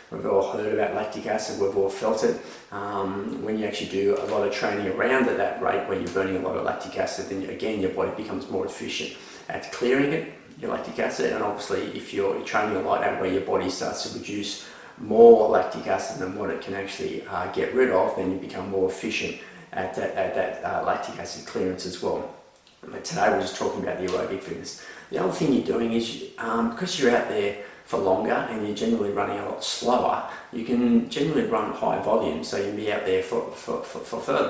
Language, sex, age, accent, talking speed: English, male, 30-49, Australian, 225 wpm